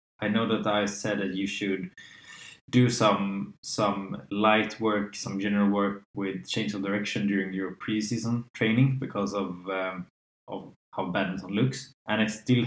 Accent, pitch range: Norwegian, 100-110 Hz